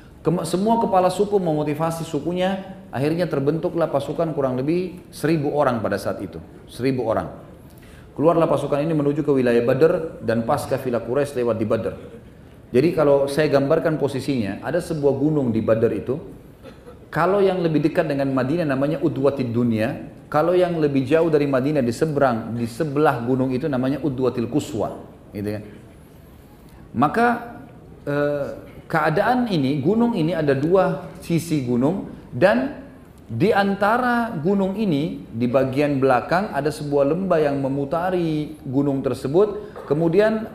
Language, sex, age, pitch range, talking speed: Indonesian, male, 30-49, 130-175 Hz, 140 wpm